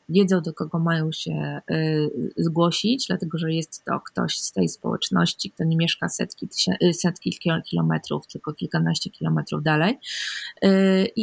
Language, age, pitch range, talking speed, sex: Polish, 20-39, 170-195 Hz, 135 wpm, female